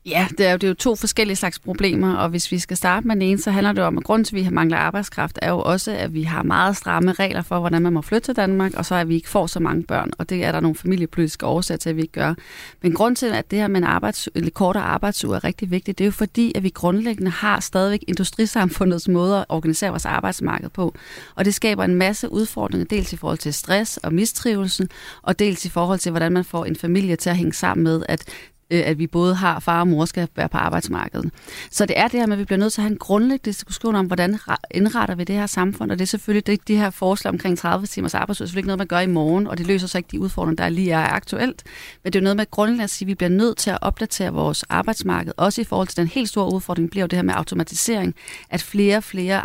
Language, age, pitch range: English, 30-49, 175-205 Hz